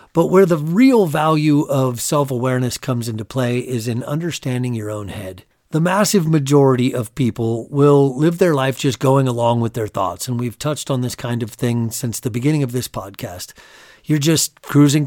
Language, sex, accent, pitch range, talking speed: English, male, American, 120-155 Hz, 190 wpm